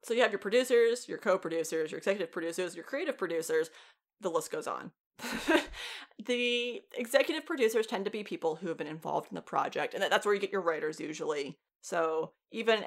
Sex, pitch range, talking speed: female, 170-265 Hz, 190 wpm